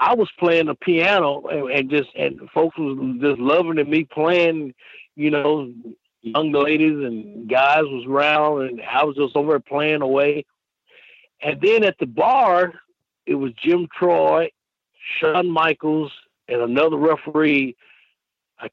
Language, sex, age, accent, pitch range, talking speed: English, male, 60-79, American, 140-175 Hz, 145 wpm